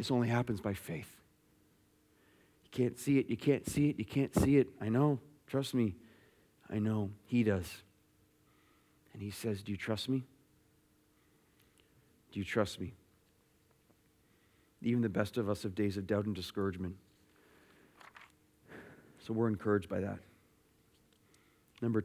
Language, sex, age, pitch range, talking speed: English, male, 40-59, 105-150 Hz, 145 wpm